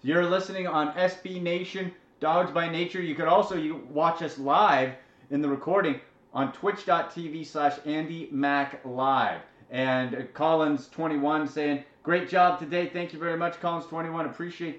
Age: 30-49